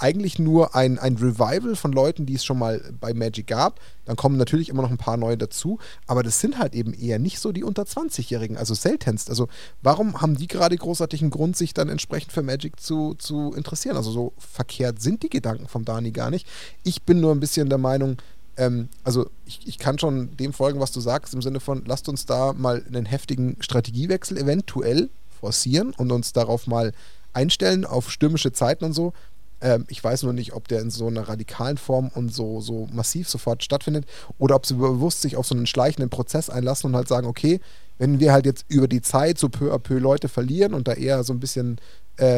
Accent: German